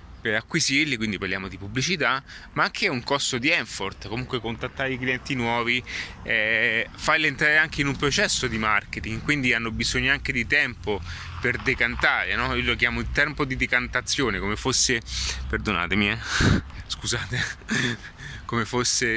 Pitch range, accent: 105-140 Hz, native